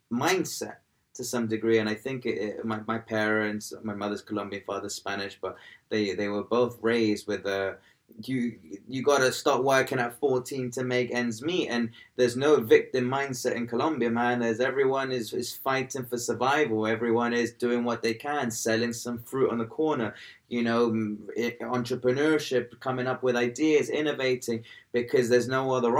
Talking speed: 175 wpm